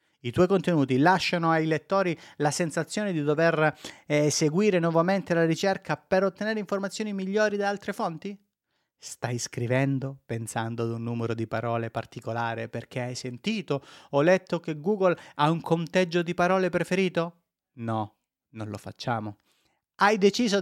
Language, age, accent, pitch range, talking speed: Italian, 30-49, native, 130-180 Hz, 145 wpm